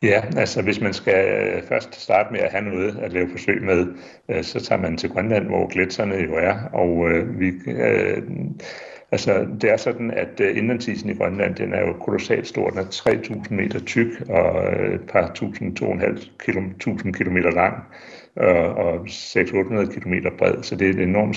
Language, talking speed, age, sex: Danish, 165 wpm, 60-79, male